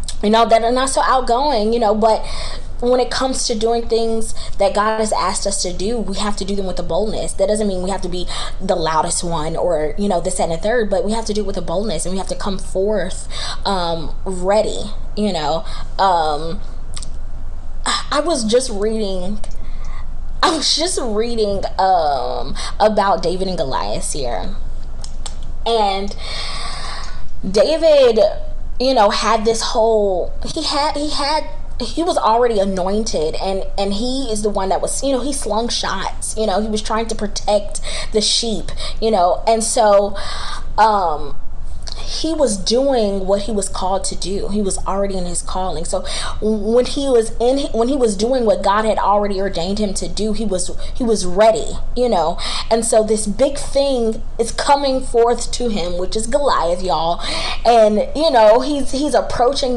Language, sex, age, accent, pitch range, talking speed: English, female, 20-39, American, 190-235 Hz, 185 wpm